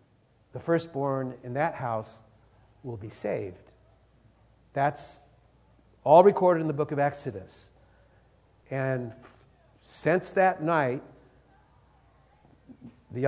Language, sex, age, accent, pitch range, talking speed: English, male, 60-79, American, 125-180 Hz, 95 wpm